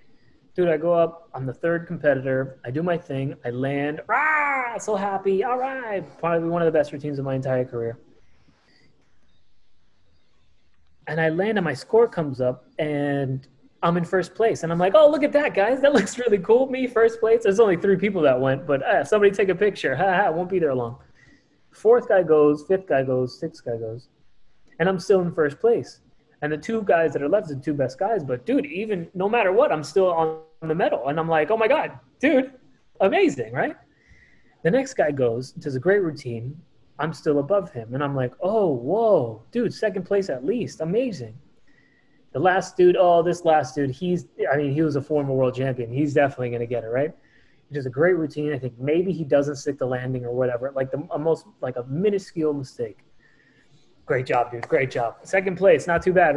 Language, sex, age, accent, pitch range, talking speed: English, male, 20-39, American, 135-195 Hz, 210 wpm